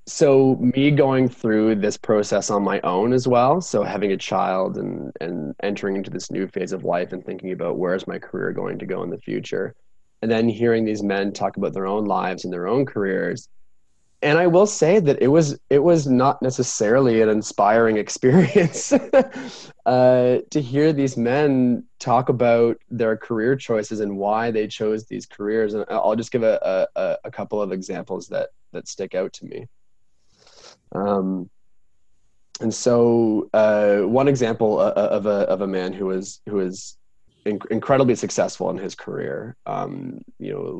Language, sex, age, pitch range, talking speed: English, male, 20-39, 100-130 Hz, 180 wpm